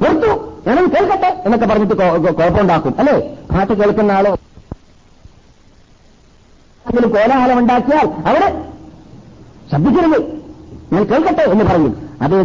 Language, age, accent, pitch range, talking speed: Malayalam, 50-69, native, 165-260 Hz, 90 wpm